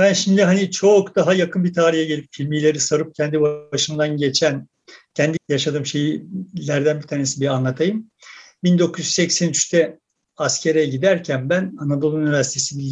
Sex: male